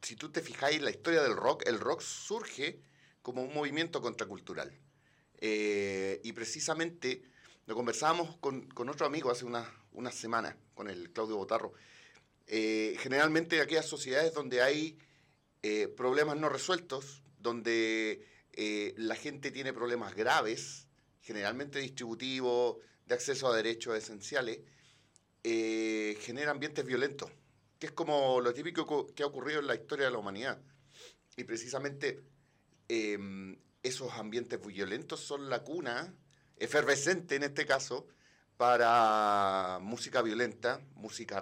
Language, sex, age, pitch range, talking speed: Spanish, male, 40-59, 110-150 Hz, 135 wpm